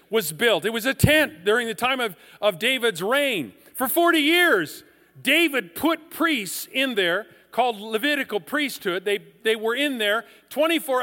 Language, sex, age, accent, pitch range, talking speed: English, male, 50-69, American, 195-250 Hz, 165 wpm